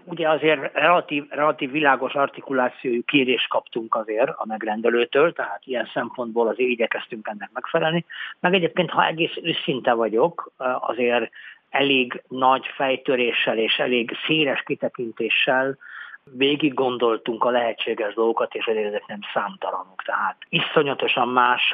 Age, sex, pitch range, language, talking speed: 50-69, male, 115-135 Hz, Hungarian, 125 wpm